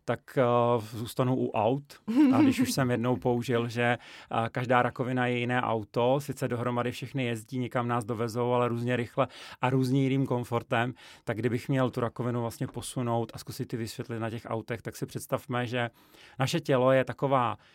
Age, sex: 30-49, male